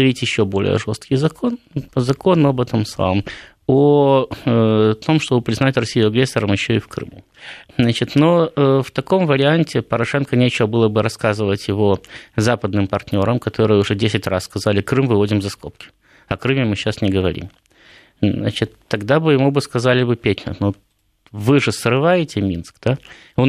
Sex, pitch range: male, 105-140 Hz